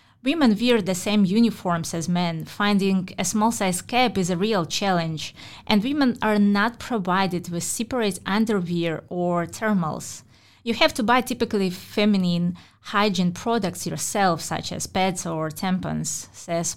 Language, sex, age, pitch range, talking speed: English, female, 20-39, 175-215 Hz, 145 wpm